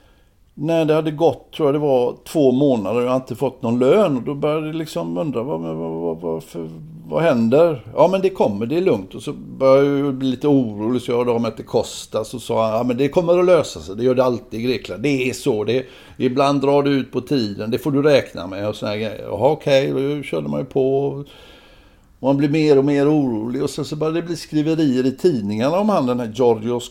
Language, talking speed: Swedish, 235 wpm